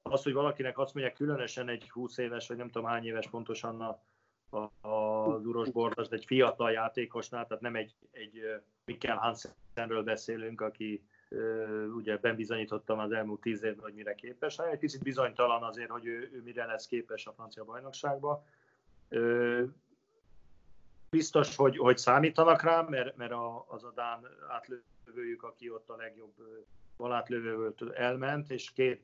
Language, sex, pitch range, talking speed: Hungarian, male, 110-130 Hz, 150 wpm